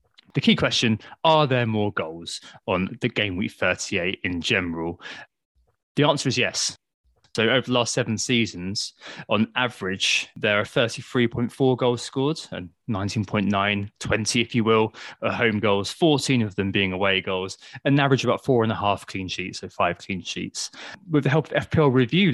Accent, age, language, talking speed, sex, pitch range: British, 20-39, English, 175 wpm, male, 105-145 Hz